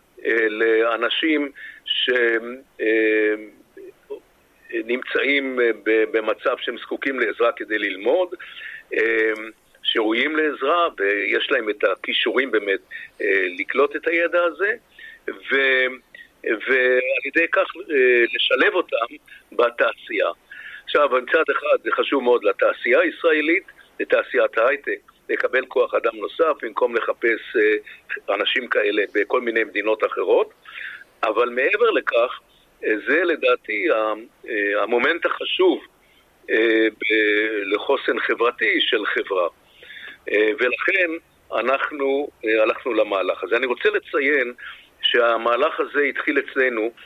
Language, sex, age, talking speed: Hebrew, male, 50-69, 90 wpm